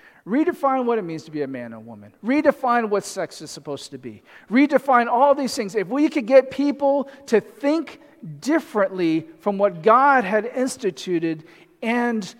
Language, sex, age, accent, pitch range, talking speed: English, male, 40-59, American, 195-275 Hz, 175 wpm